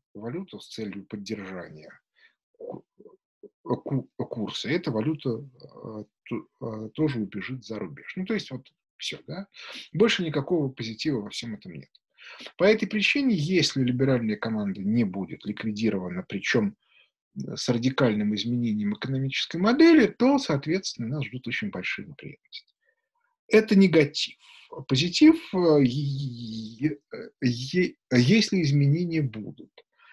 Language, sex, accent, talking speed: Russian, male, native, 105 wpm